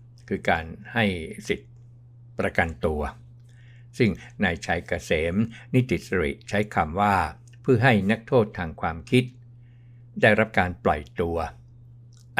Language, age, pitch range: Thai, 60-79, 95-120 Hz